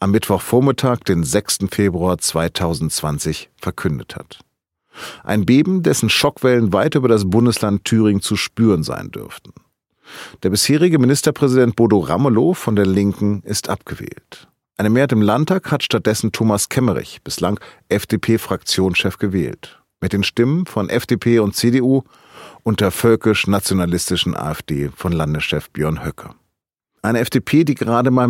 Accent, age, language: German, 40-59, German